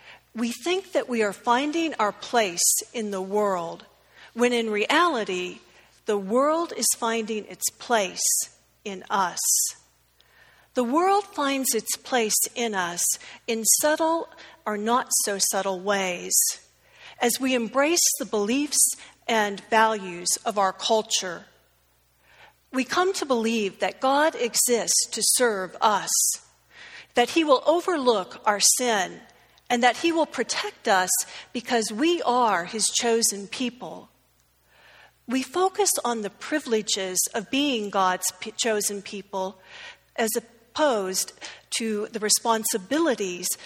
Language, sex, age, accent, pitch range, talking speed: English, female, 50-69, American, 200-270 Hz, 120 wpm